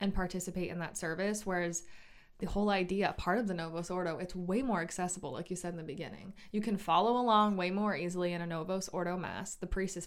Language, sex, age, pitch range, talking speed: English, female, 20-39, 170-205 Hz, 230 wpm